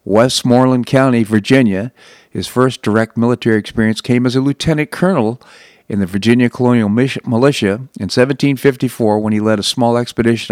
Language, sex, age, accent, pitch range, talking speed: English, male, 50-69, American, 105-130 Hz, 150 wpm